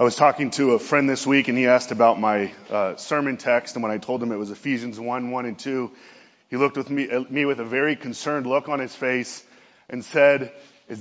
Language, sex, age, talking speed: English, male, 30-49, 240 wpm